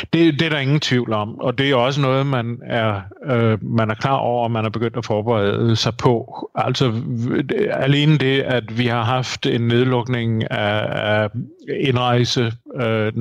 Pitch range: 115-135 Hz